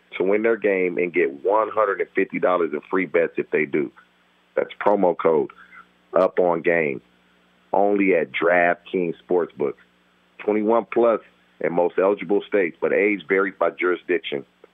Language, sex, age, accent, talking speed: English, male, 40-59, American, 135 wpm